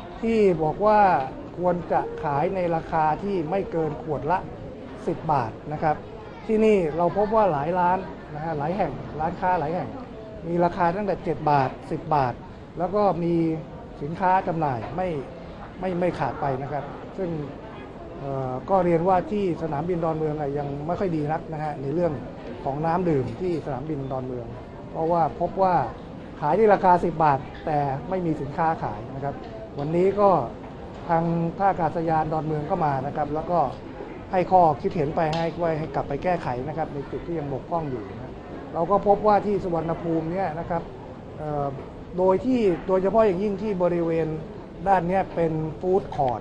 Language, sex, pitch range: Thai, male, 150-180 Hz